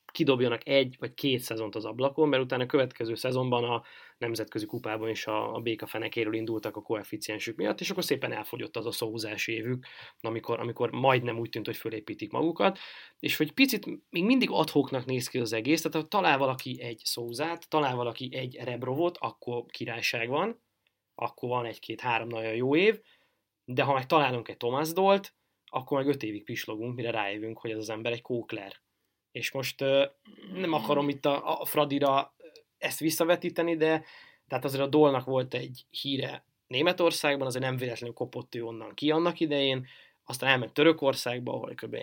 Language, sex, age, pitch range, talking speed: Hungarian, male, 20-39, 115-150 Hz, 175 wpm